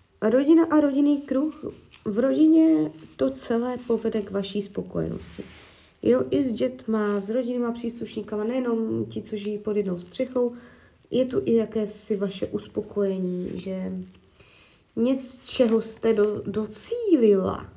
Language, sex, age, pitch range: Czech, female, 20-39, 185-230 Hz